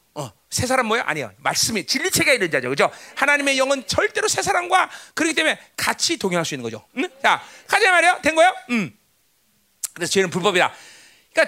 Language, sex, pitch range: Korean, male, 255-425 Hz